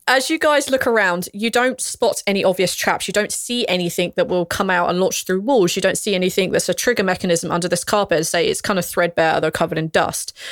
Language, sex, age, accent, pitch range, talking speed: English, female, 20-39, British, 170-205 Hz, 255 wpm